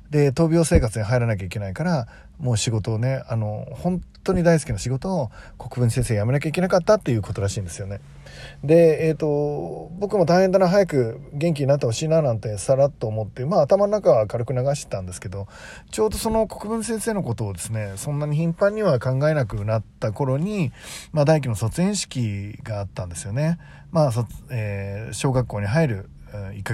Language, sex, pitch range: Japanese, male, 105-155 Hz